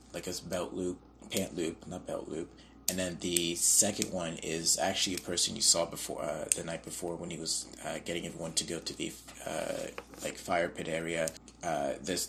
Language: English